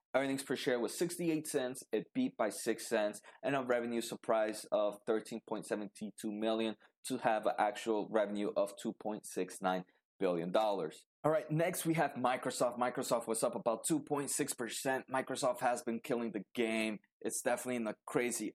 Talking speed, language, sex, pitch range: 160 wpm, English, male, 110-135 Hz